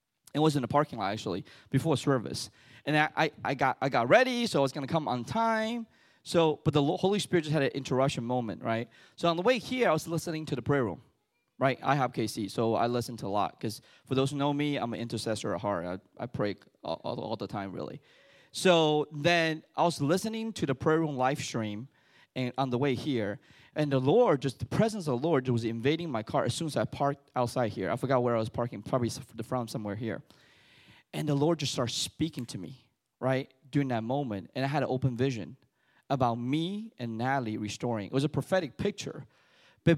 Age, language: 20-39, English